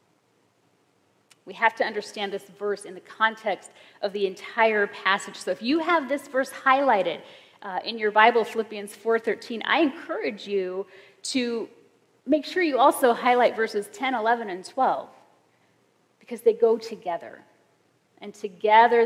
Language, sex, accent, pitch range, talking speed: English, female, American, 195-255 Hz, 145 wpm